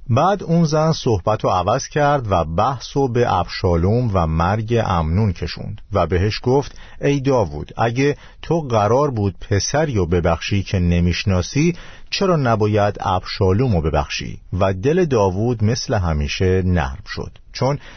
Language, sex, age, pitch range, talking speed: Persian, male, 50-69, 95-125 Hz, 145 wpm